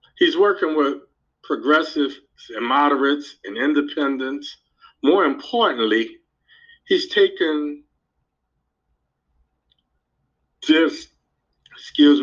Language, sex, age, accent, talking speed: English, male, 50-69, American, 70 wpm